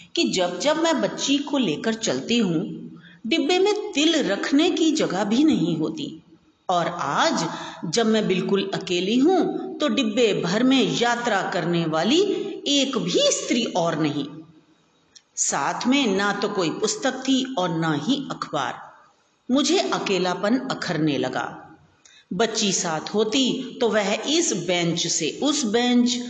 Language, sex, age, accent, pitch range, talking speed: Hindi, female, 40-59, native, 205-310 Hz, 140 wpm